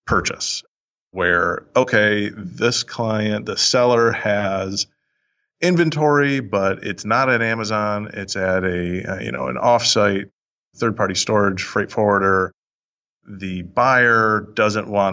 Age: 30-49